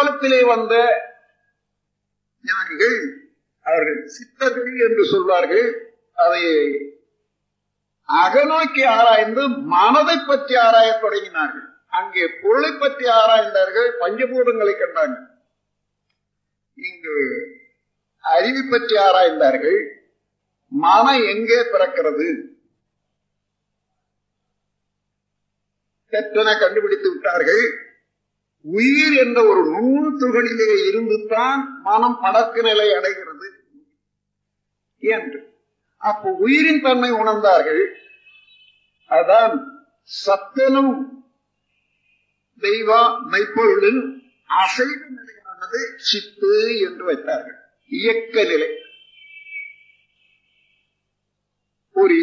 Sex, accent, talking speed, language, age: male, native, 60 wpm, Tamil, 50-69